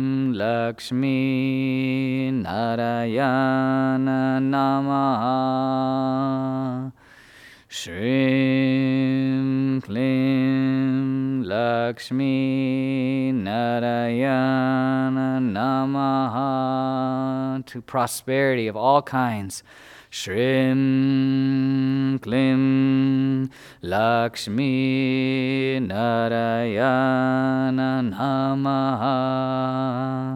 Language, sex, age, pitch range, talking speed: English, male, 20-39, 130-135 Hz, 35 wpm